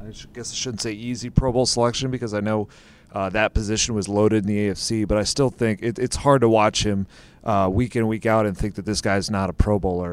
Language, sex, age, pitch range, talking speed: English, male, 30-49, 100-115 Hz, 260 wpm